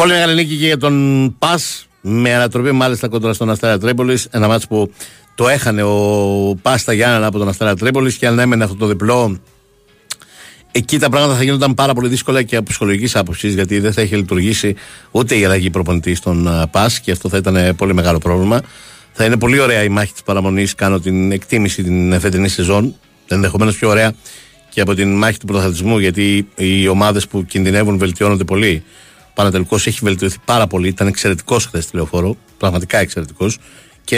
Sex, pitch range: male, 95-120 Hz